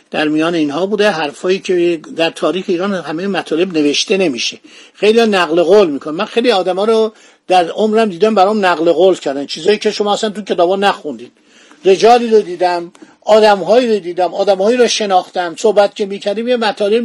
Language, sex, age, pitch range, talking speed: Persian, male, 50-69, 180-225 Hz, 175 wpm